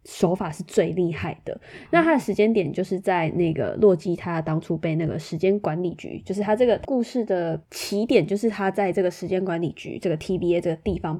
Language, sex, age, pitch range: Chinese, female, 20-39, 175-220 Hz